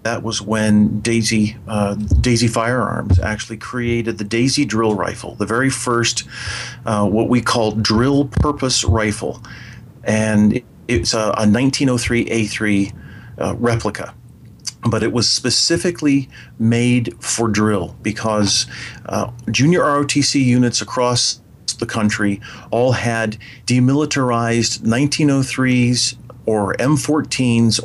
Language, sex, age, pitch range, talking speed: English, male, 40-59, 110-125 Hz, 110 wpm